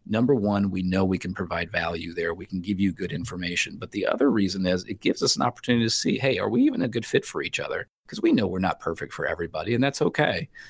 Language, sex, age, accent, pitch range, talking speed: English, male, 30-49, American, 90-105 Hz, 270 wpm